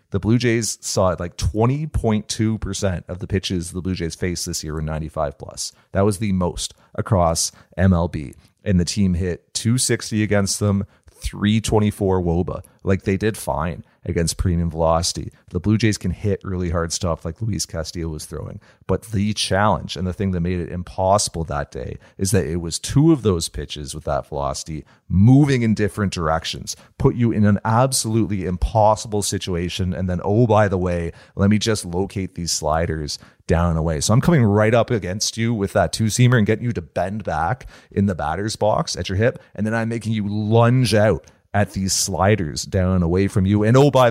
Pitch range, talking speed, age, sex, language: 85-110 Hz, 195 wpm, 40-59, male, English